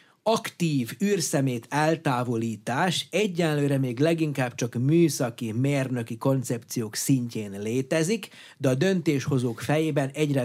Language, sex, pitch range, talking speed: Hungarian, male, 130-175 Hz, 100 wpm